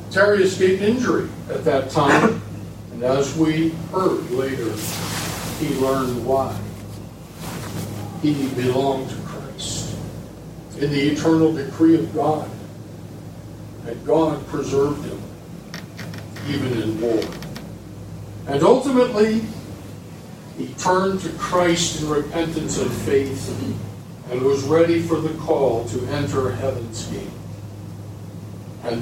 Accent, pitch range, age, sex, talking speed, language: American, 125-170 Hz, 60-79, male, 110 wpm, English